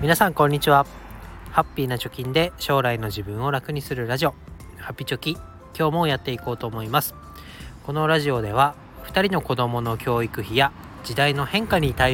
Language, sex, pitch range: Japanese, male, 105-145 Hz